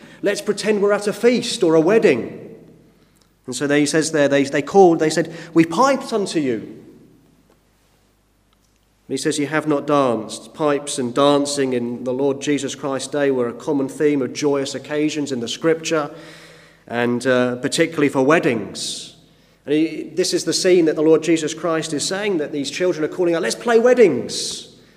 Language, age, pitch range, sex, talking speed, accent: English, 40-59, 145-195 Hz, male, 185 wpm, British